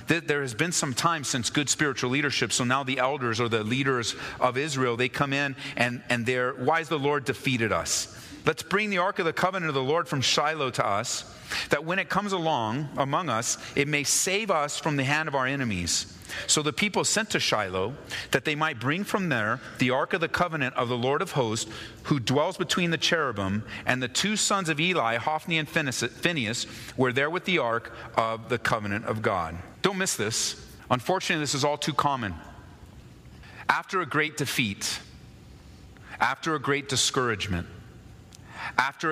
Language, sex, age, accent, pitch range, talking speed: English, male, 40-59, American, 115-150 Hz, 190 wpm